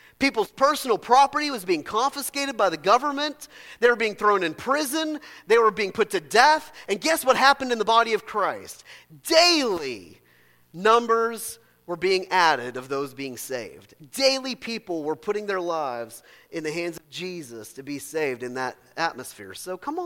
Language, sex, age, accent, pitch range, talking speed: English, male, 40-59, American, 210-315 Hz, 175 wpm